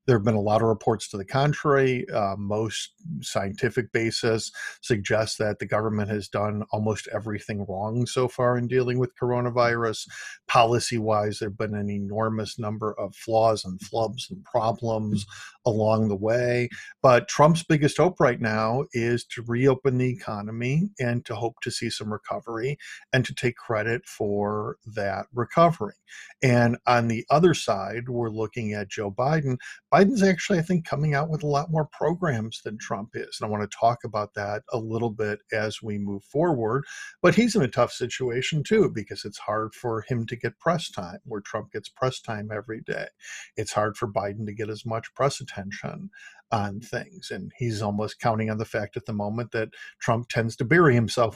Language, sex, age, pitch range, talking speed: English, male, 50-69, 105-125 Hz, 185 wpm